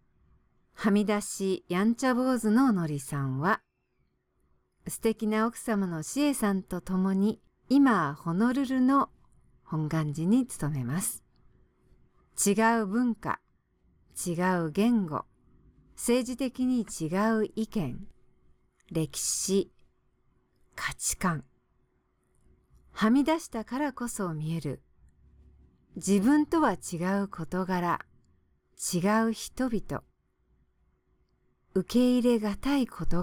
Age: 50-69